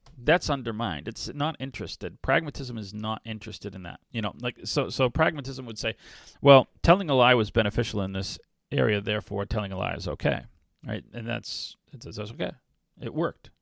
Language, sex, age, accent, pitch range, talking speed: English, male, 40-59, American, 105-135 Hz, 190 wpm